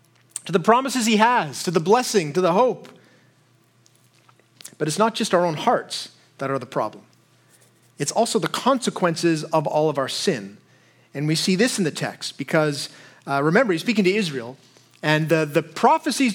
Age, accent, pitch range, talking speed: 30-49, American, 160-240 Hz, 180 wpm